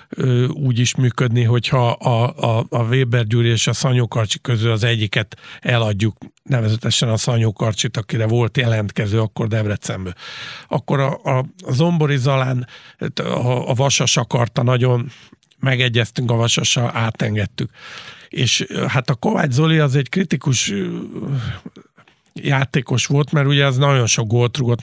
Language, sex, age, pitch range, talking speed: Hungarian, male, 50-69, 115-140 Hz, 135 wpm